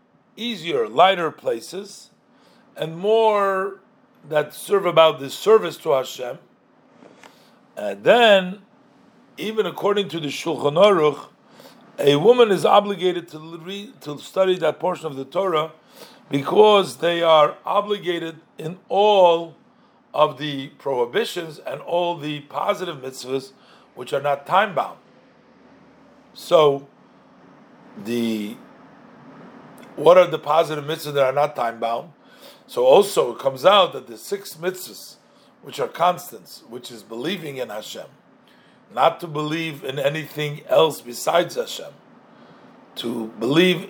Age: 50-69